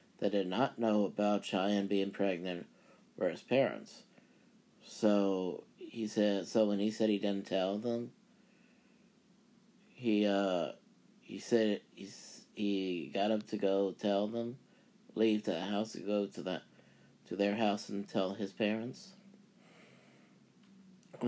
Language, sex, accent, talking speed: English, male, American, 140 wpm